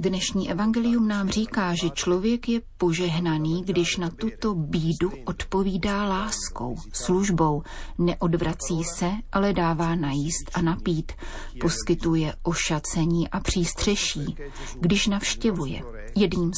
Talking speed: 105 wpm